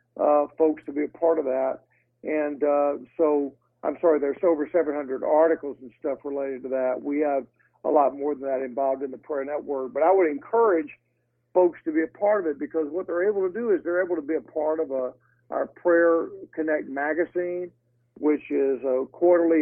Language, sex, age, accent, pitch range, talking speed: English, male, 50-69, American, 140-175 Hz, 210 wpm